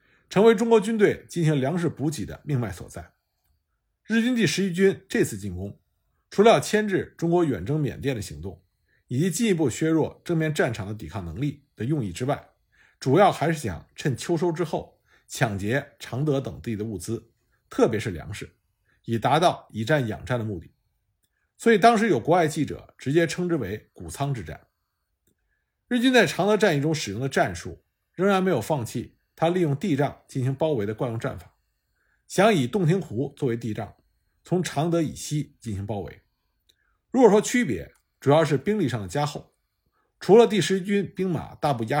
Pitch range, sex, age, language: 115-175 Hz, male, 50-69, Chinese